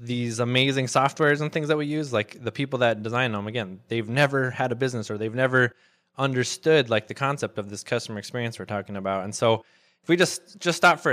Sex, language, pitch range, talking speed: male, English, 115-140 Hz, 225 wpm